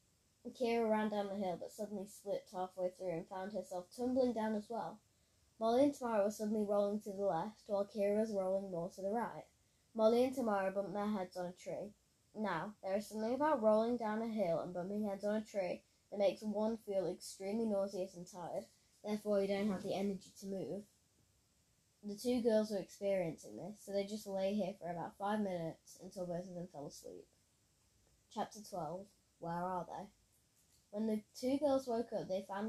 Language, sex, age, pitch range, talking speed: English, female, 10-29, 185-215 Hz, 200 wpm